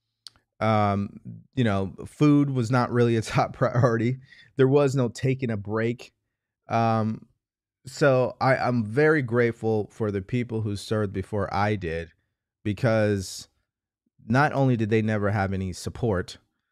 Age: 30-49